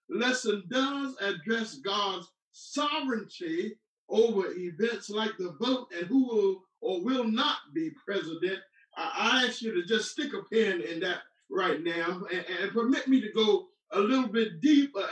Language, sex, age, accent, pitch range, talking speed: English, male, 50-69, American, 205-280 Hz, 165 wpm